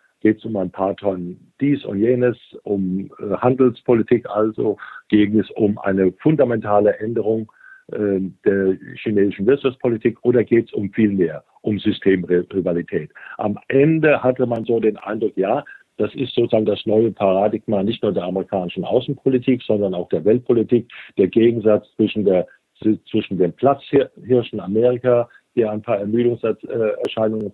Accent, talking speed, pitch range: German, 145 wpm, 100-120 Hz